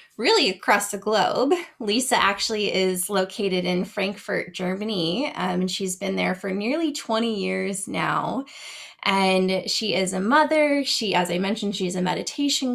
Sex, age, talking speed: female, 20-39, 150 wpm